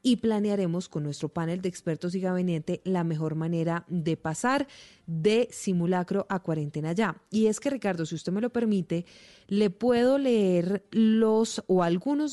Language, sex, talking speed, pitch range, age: Spanish, female, 165 wpm, 170-215 Hz, 30-49